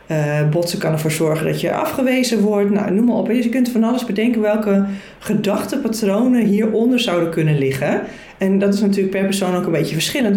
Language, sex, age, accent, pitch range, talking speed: Dutch, female, 40-59, Dutch, 170-215 Hz, 195 wpm